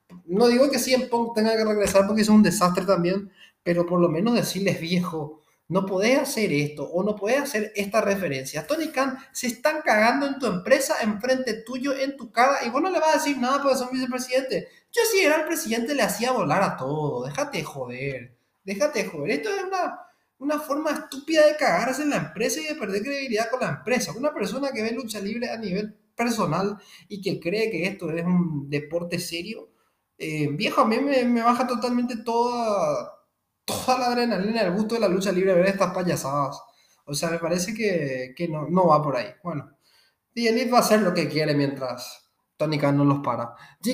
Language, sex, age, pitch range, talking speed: Spanish, male, 30-49, 155-250 Hz, 205 wpm